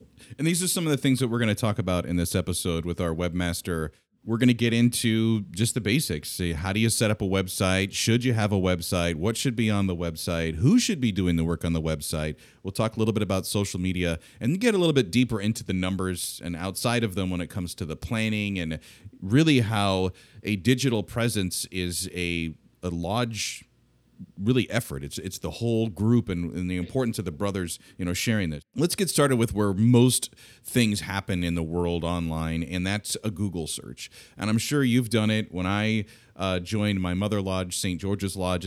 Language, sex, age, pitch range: English, male, 30-49, 90-125 Hz